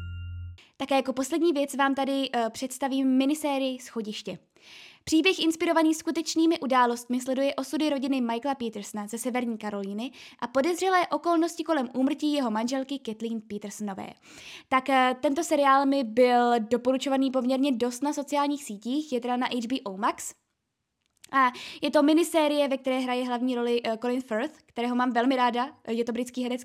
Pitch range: 235-290 Hz